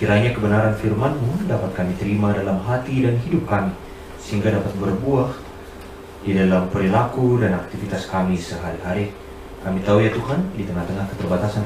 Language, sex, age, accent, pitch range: Japanese, male, 30-49, Indonesian, 90-115 Hz